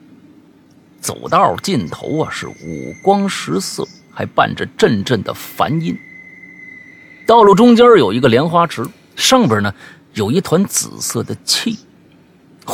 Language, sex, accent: Chinese, male, native